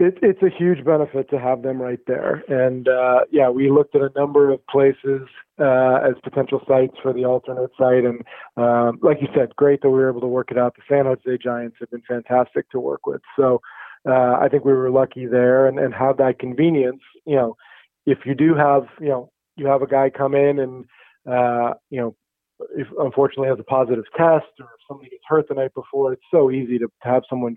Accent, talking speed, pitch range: American, 225 wpm, 125-145 Hz